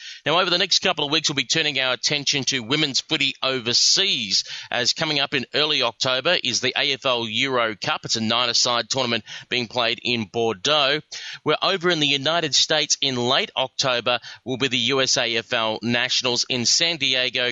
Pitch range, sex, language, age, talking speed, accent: 120-160 Hz, male, English, 30-49, 180 wpm, Australian